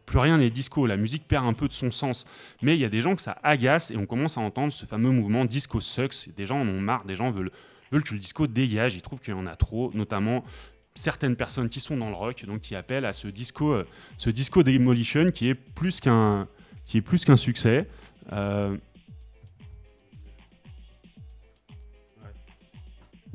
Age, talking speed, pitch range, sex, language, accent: 20-39, 200 wpm, 100-135 Hz, male, French, French